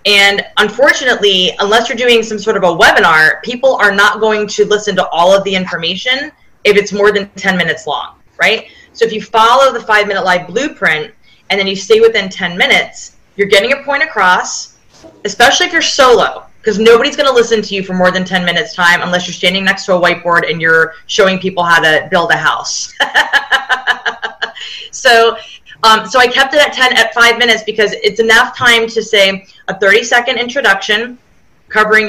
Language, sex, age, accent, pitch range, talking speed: English, female, 20-39, American, 185-235 Hz, 195 wpm